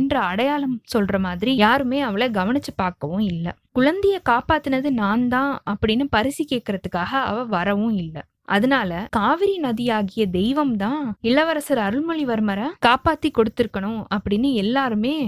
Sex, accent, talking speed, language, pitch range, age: female, native, 85 wpm, Tamil, 195-260 Hz, 20-39